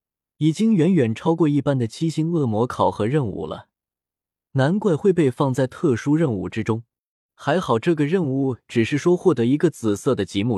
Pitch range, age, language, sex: 115-165 Hz, 20-39, Chinese, male